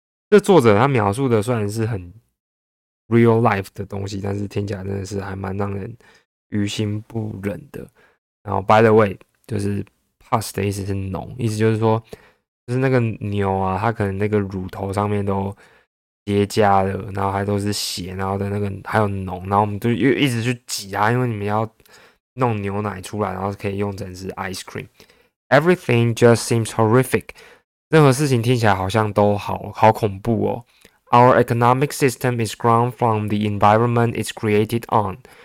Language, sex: Chinese, male